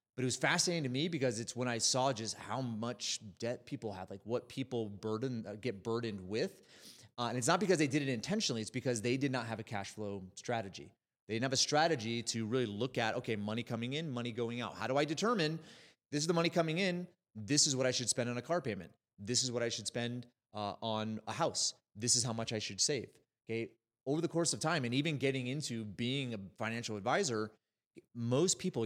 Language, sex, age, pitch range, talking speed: English, male, 30-49, 110-140 Hz, 235 wpm